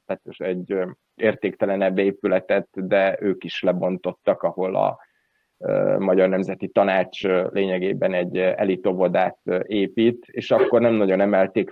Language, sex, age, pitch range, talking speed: Hungarian, male, 30-49, 95-115 Hz, 115 wpm